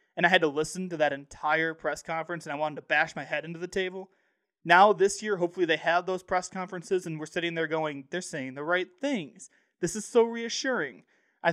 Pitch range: 165-205 Hz